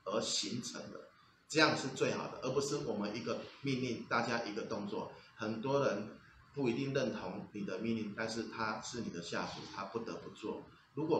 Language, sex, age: Chinese, male, 30-49